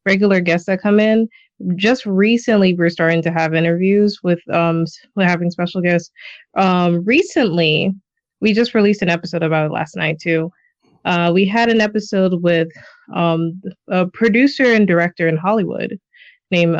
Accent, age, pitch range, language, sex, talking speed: American, 20-39, 175-210 Hz, English, female, 155 wpm